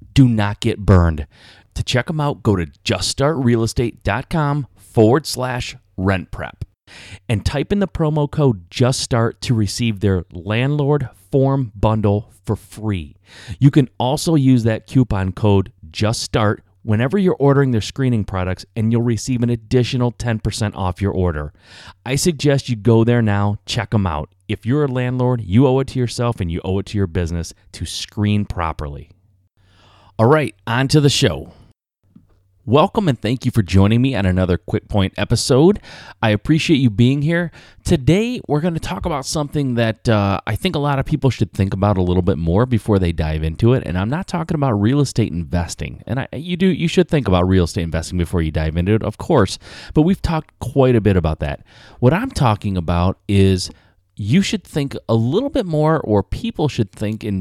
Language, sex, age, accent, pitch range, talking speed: English, male, 30-49, American, 95-135 Hz, 190 wpm